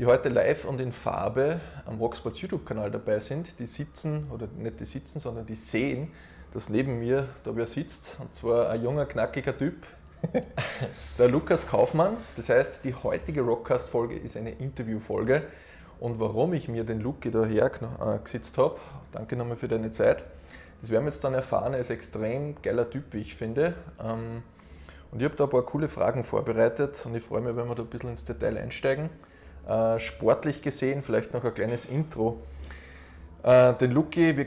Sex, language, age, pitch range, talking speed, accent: male, German, 20-39, 110-140 Hz, 180 wpm, Austrian